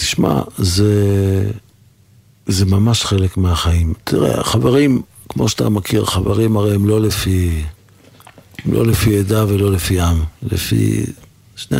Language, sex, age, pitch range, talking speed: Hebrew, male, 50-69, 95-110 Hz, 120 wpm